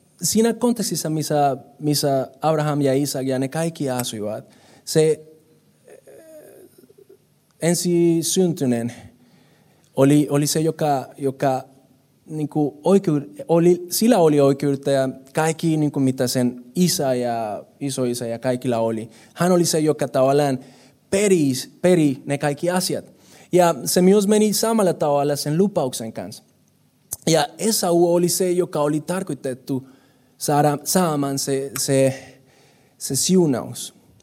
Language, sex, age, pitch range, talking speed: Finnish, male, 20-39, 130-170 Hz, 115 wpm